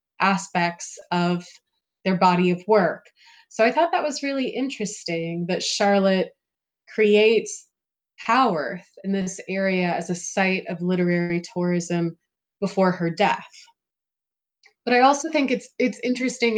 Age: 20-39